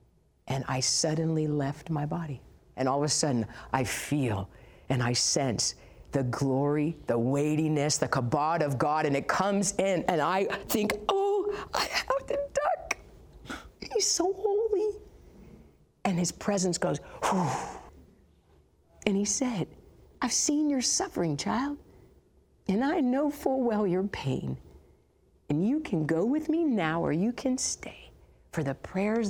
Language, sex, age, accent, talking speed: English, female, 50-69, American, 145 wpm